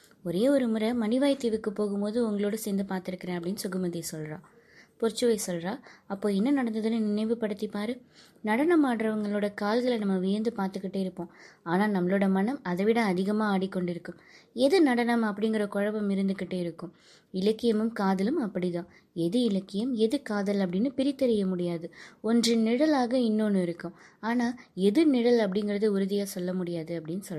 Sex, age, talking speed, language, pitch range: female, 20-39, 130 wpm, Tamil, 185-230 Hz